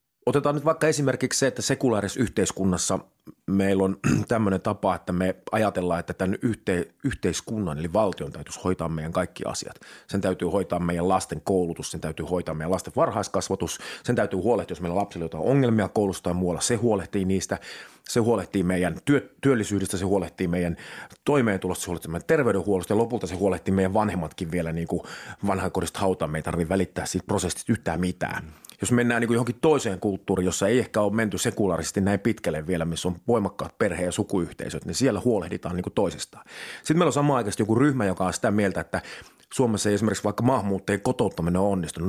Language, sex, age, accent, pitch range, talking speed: Finnish, male, 30-49, native, 90-115 Hz, 180 wpm